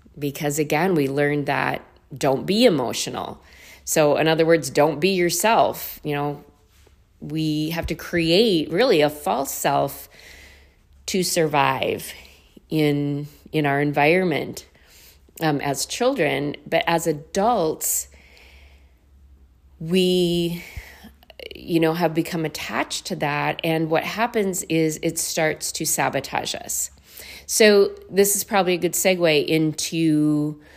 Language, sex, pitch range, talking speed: English, female, 130-175 Hz, 120 wpm